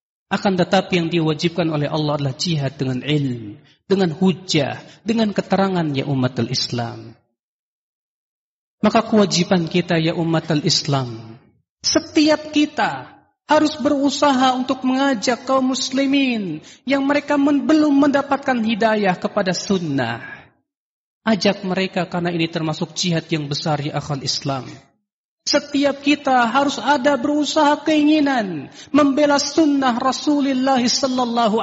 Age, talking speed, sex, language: 40-59, 110 wpm, male, Indonesian